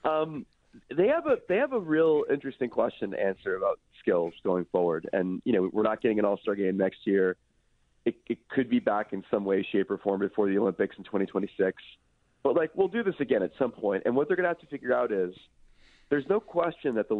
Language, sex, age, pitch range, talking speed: English, male, 30-49, 100-125 Hz, 235 wpm